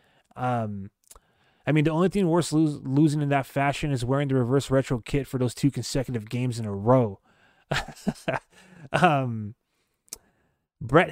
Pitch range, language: 115-145 Hz, English